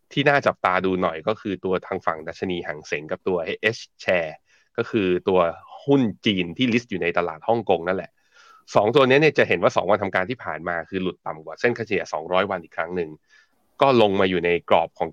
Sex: male